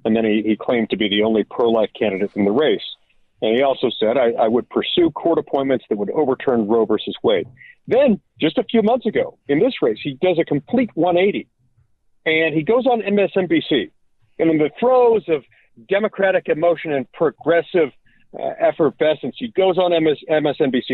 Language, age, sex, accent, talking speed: English, 50-69, male, American, 185 wpm